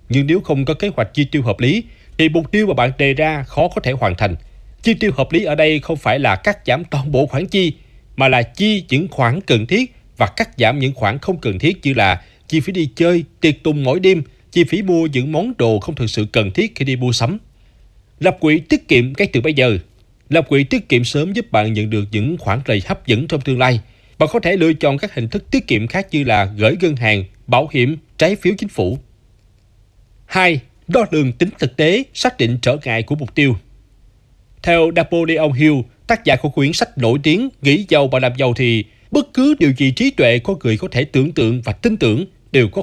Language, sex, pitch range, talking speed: Vietnamese, male, 120-175 Hz, 240 wpm